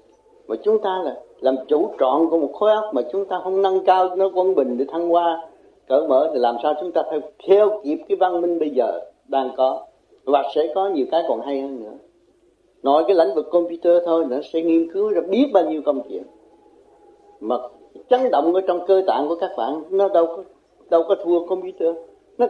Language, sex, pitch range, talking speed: Vietnamese, male, 155-245 Hz, 220 wpm